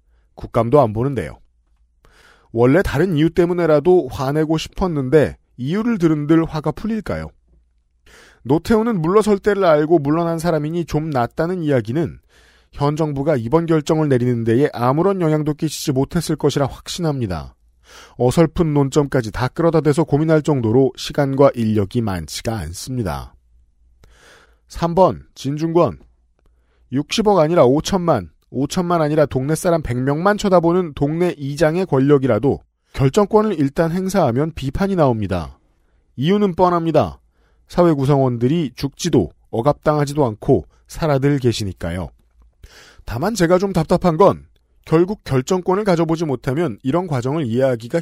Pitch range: 115-170 Hz